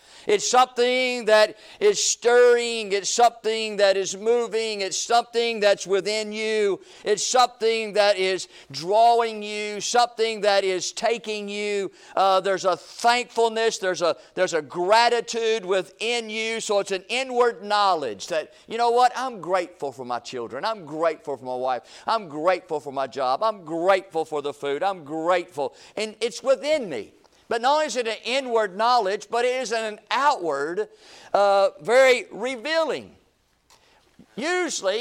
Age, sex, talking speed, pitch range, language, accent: 50-69, male, 150 wpm, 195-250 Hz, English, American